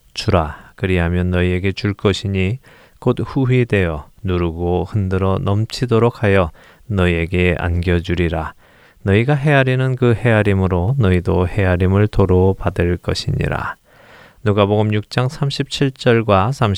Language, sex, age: Korean, male, 20-39